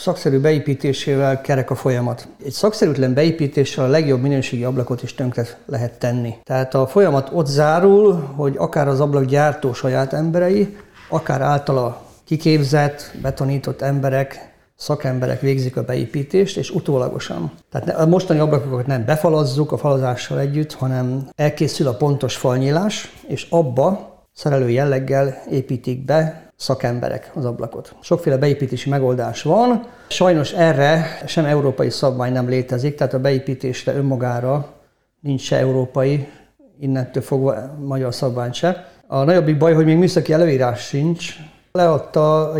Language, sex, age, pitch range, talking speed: Hungarian, male, 50-69, 130-155 Hz, 130 wpm